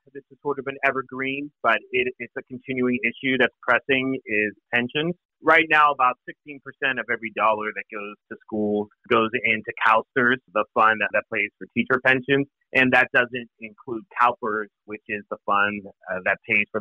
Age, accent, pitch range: 30-49, American, 115-140 Hz